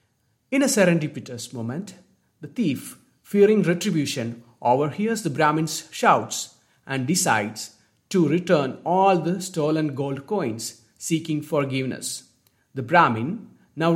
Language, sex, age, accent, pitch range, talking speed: English, male, 50-69, Indian, 120-175 Hz, 110 wpm